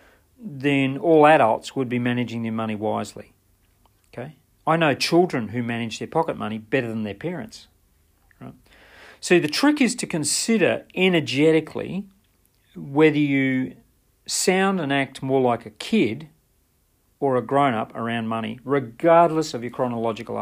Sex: male